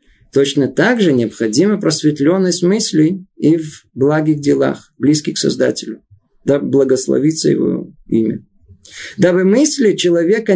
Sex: male